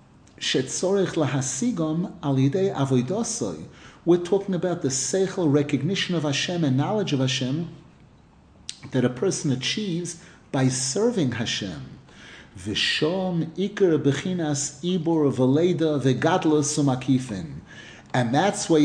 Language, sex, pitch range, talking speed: English, male, 140-185 Hz, 70 wpm